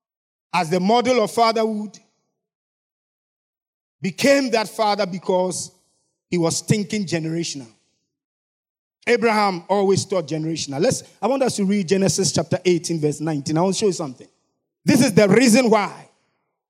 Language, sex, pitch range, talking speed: English, male, 160-220 Hz, 140 wpm